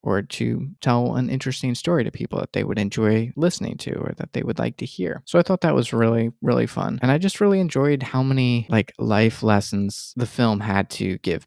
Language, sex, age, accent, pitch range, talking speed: English, male, 20-39, American, 100-115 Hz, 230 wpm